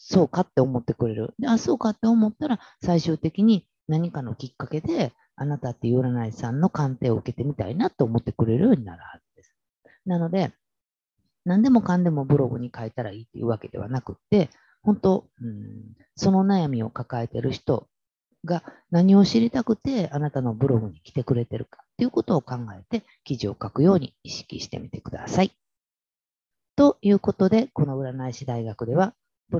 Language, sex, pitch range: Japanese, female, 115-180 Hz